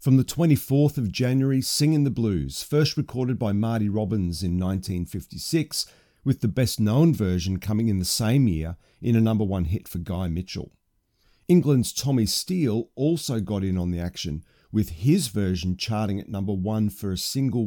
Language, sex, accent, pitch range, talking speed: English, male, Australian, 95-125 Hz, 175 wpm